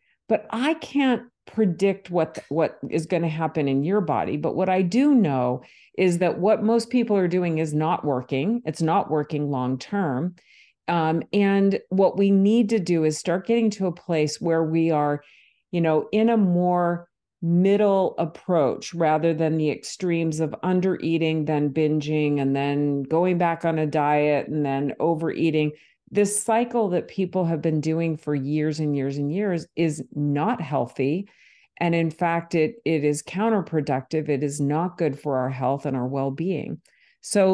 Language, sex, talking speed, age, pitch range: English, female, 170 wpm, 50-69, 150-190 Hz